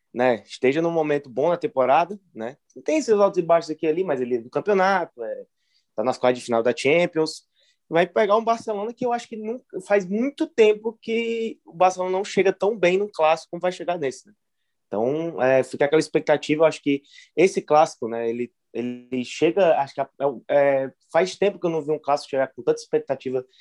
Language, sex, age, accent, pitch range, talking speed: Portuguese, male, 20-39, Brazilian, 130-190 Hz, 215 wpm